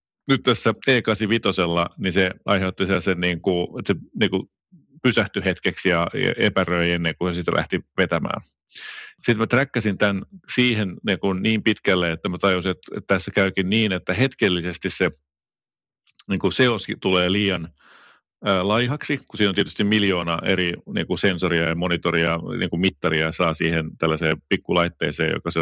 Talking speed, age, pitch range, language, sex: 140 wpm, 30-49, 85-105 Hz, Finnish, male